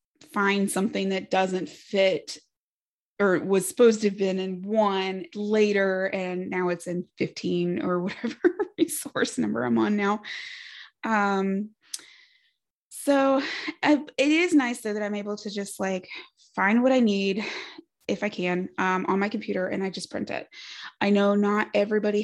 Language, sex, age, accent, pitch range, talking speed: English, female, 20-39, American, 180-225 Hz, 160 wpm